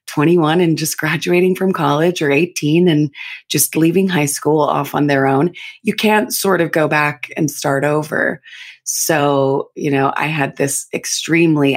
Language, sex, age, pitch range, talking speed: English, female, 30-49, 145-185 Hz, 170 wpm